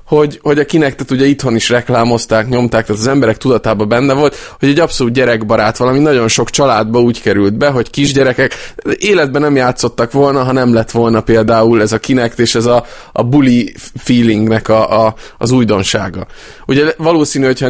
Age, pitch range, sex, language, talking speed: 20-39, 110-135 Hz, male, Hungarian, 180 wpm